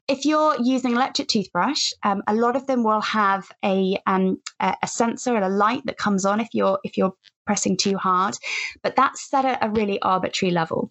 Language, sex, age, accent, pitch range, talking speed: English, female, 20-39, British, 180-225 Hz, 210 wpm